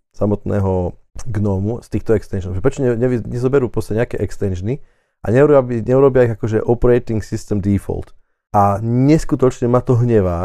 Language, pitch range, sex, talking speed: Slovak, 100-120 Hz, male, 145 wpm